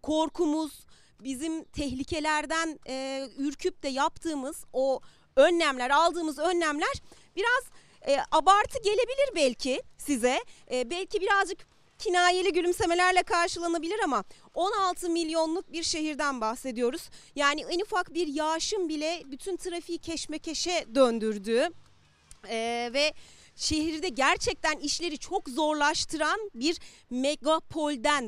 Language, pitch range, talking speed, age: Turkish, 270-335 Hz, 100 wpm, 40-59